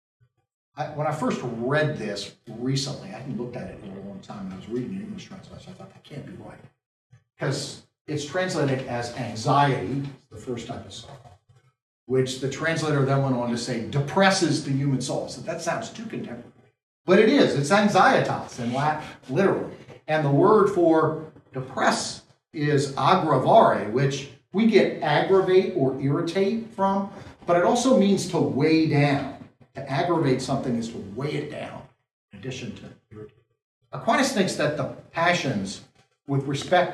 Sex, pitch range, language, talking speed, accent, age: male, 130-180 Hz, English, 170 wpm, American, 50-69